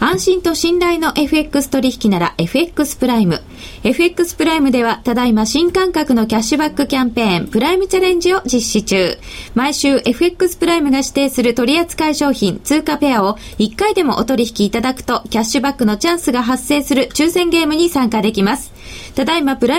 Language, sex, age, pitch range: Japanese, female, 20-39, 240-325 Hz